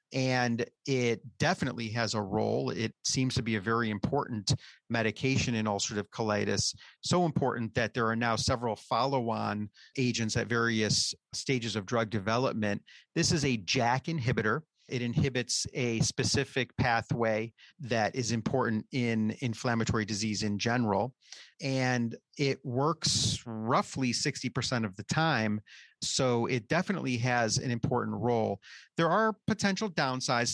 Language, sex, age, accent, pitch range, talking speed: English, male, 40-59, American, 110-130 Hz, 135 wpm